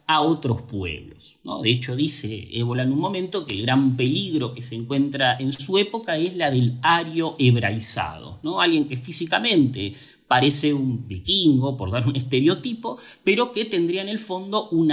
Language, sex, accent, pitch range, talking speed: Spanish, male, Argentinian, 120-185 Hz, 170 wpm